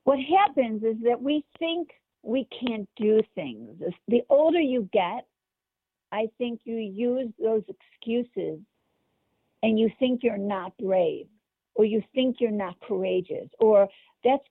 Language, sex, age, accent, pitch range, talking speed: English, female, 50-69, American, 215-270 Hz, 140 wpm